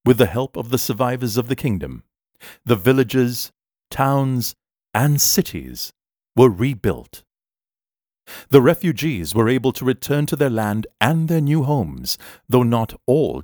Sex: male